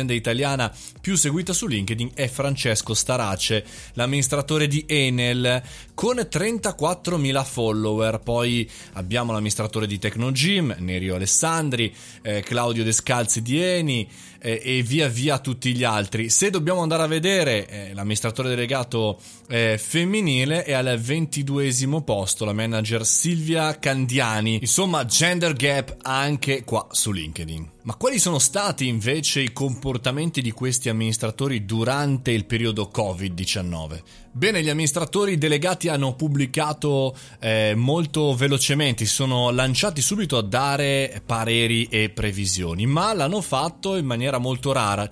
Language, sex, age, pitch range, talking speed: Italian, male, 20-39, 110-150 Hz, 130 wpm